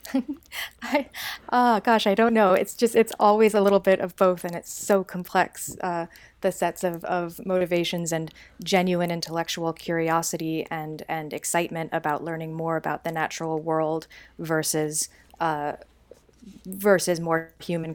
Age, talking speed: 20-39, 145 wpm